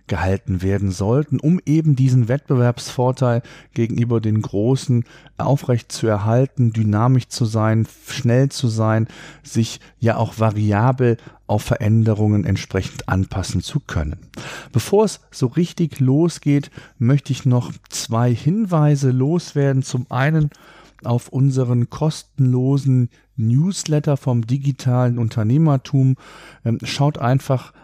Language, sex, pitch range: German, male, 115-140 Hz